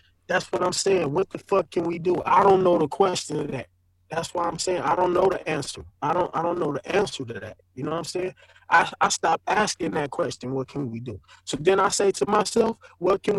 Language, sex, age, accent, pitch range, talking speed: English, male, 20-39, American, 145-210 Hz, 260 wpm